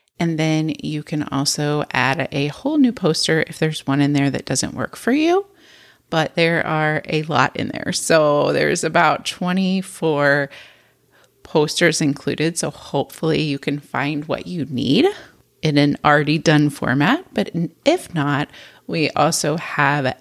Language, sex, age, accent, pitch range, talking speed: English, female, 30-49, American, 145-195 Hz, 155 wpm